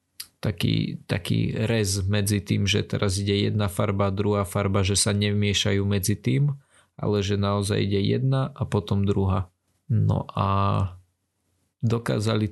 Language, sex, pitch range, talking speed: Slovak, male, 100-115 Hz, 135 wpm